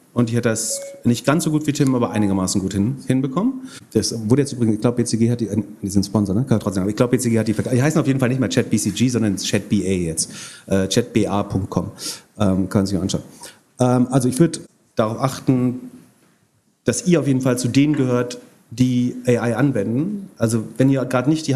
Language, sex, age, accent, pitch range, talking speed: German, male, 40-59, German, 115-135 Hz, 215 wpm